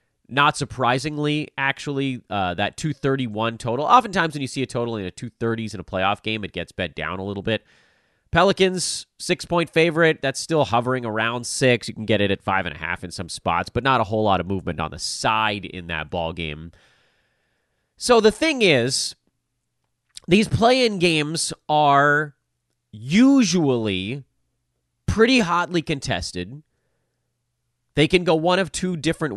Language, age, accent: English, 30-49, American